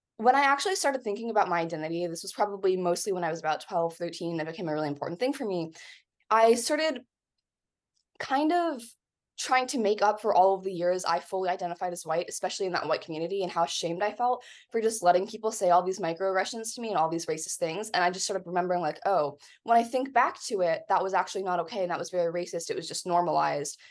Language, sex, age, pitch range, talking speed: English, female, 20-39, 175-230 Hz, 240 wpm